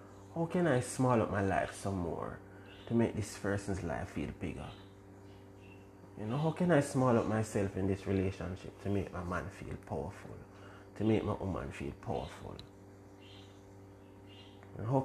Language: English